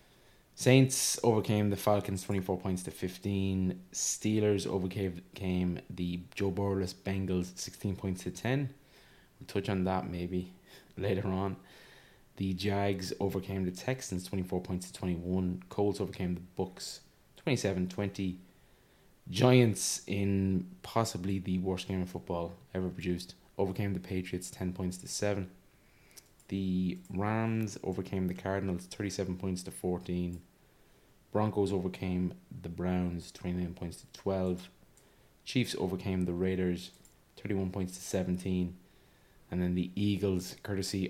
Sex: male